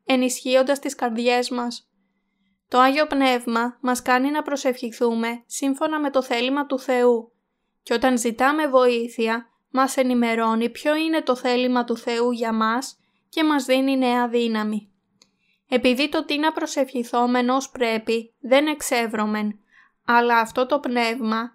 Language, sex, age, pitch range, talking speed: Greek, female, 20-39, 235-270 Hz, 135 wpm